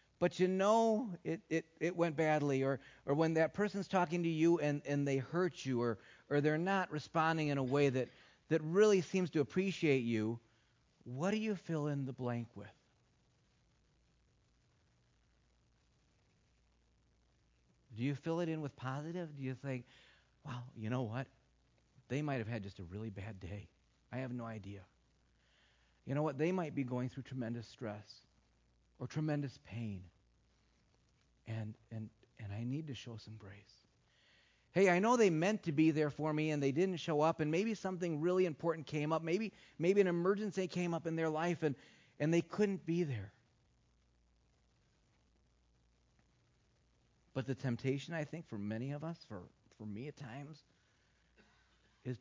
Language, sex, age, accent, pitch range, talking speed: English, male, 40-59, American, 105-160 Hz, 165 wpm